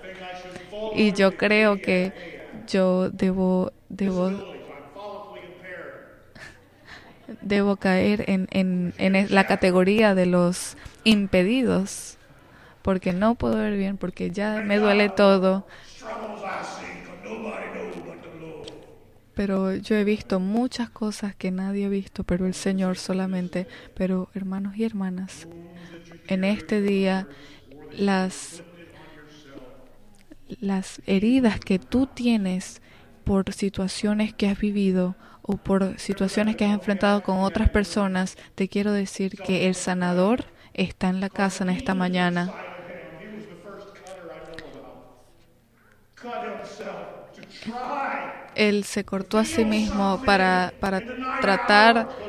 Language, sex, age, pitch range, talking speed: Spanish, female, 20-39, 185-210 Hz, 100 wpm